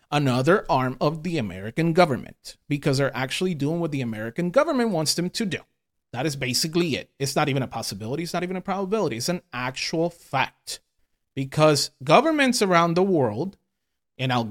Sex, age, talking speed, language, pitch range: male, 30-49, 180 wpm, English, 130-180 Hz